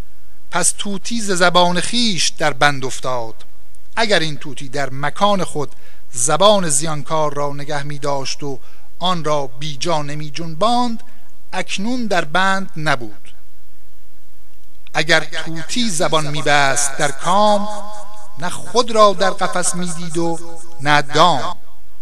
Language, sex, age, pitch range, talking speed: Persian, male, 60-79, 145-195 Hz, 115 wpm